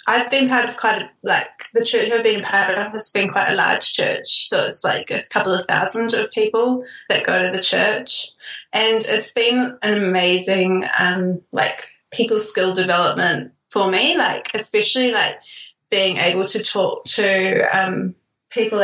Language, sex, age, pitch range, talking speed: English, female, 20-39, 190-240 Hz, 175 wpm